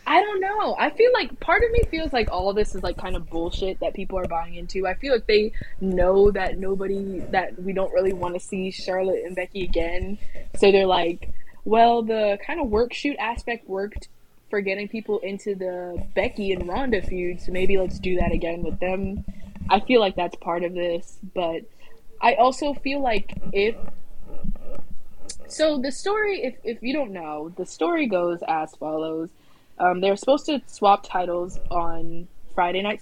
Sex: female